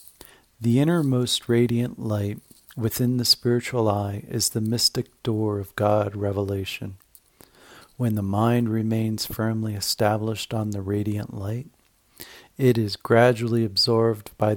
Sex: male